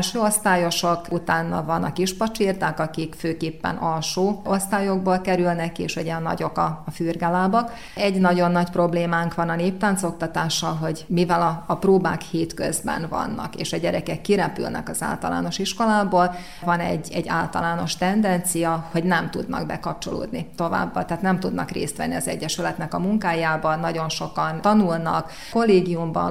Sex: female